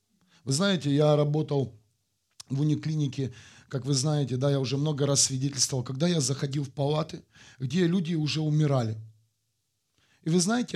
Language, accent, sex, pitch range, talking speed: Russian, native, male, 115-160 Hz, 150 wpm